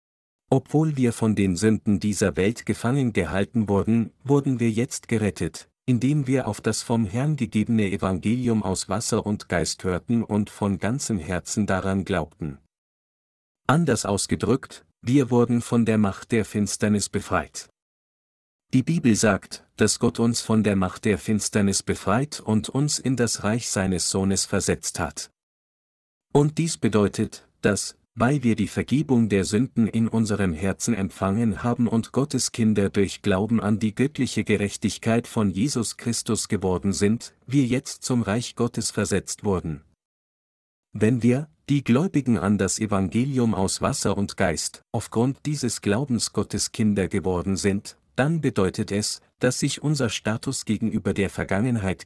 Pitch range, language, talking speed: 100-120 Hz, German, 145 wpm